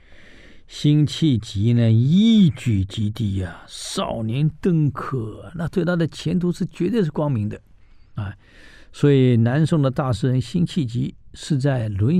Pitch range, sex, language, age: 110-155 Hz, male, Chinese, 50-69